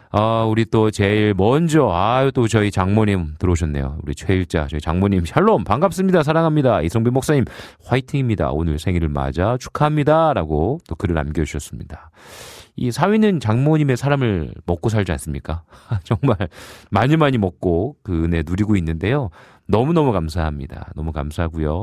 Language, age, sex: Korean, 40-59, male